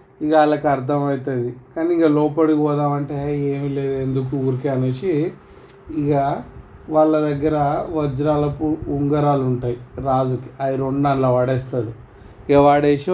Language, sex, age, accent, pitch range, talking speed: Telugu, male, 30-49, native, 130-155 Hz, 120 wpm